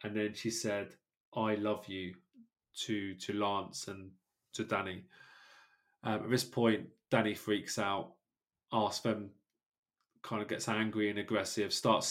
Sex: male